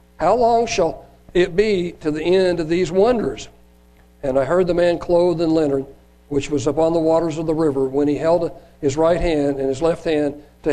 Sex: male